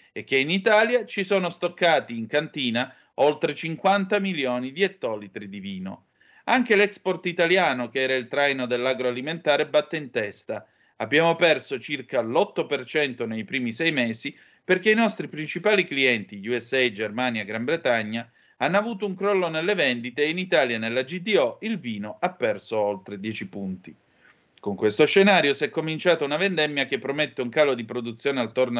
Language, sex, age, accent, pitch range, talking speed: Italian, male, 40-59, native, 120-175 Hz, 160 wpm